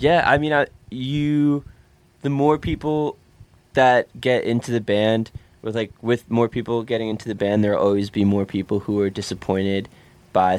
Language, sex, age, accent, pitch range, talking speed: English, male, 10-29, American, 95-110 Hz, 180 wpm